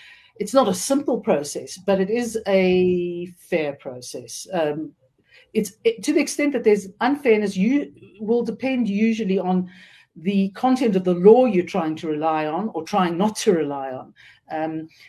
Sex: female